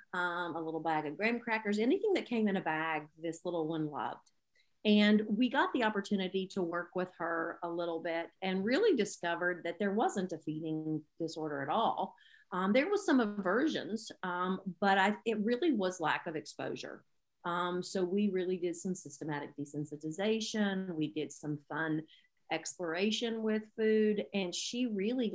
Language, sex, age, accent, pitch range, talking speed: English, female, 40-59, American, 170-215 Hz, 170 wpm